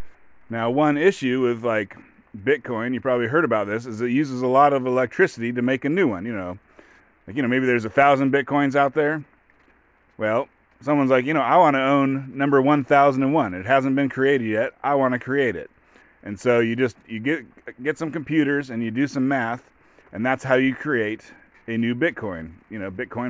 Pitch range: 115-140 Hz